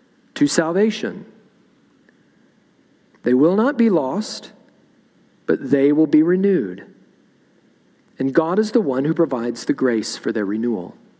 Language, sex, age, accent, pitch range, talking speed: English, male, 40-59, American, 150-215 Hz, 130 wpm